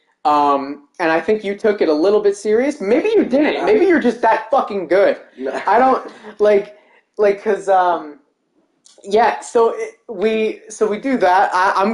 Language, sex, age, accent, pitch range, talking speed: English, male, 20-39, American, 175-225 Hz, 170 wpm